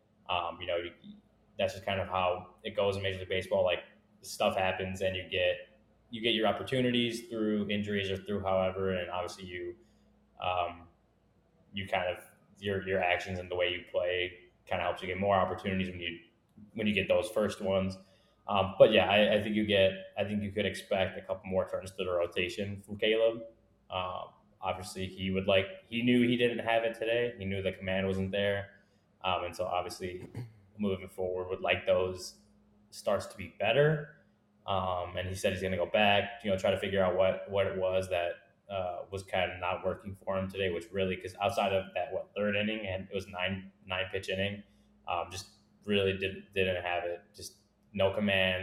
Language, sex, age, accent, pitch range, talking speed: English, male, 20-39, American, 95-105 Hz, 205 wpm